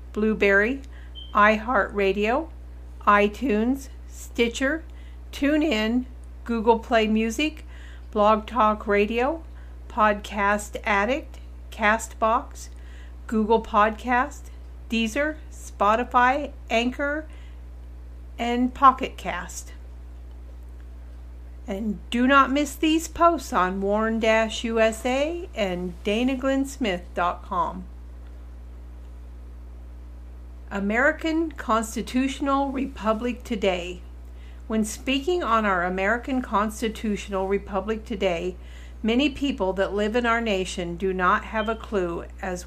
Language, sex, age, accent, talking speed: English, female, 50-69, American, 80 wpm